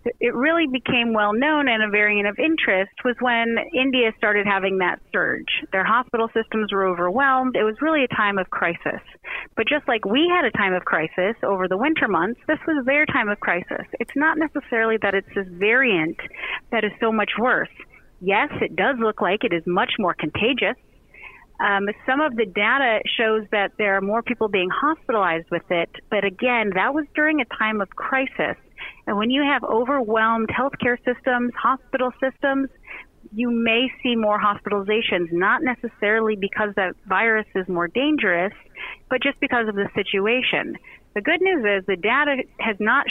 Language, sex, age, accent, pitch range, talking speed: English, female, 30-49, American, 205-260 Hz, 180 wpm